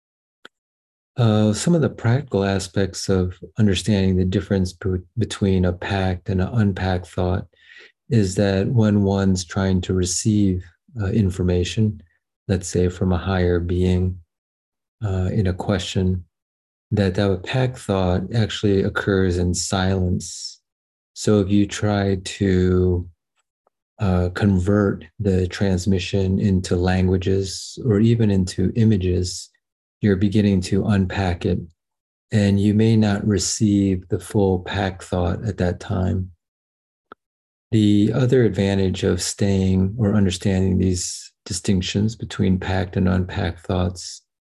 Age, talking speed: 40-59, 120 wpm